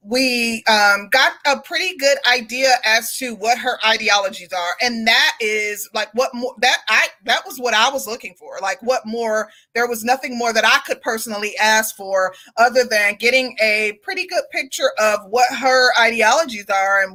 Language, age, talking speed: English, 30-49, 190 wpm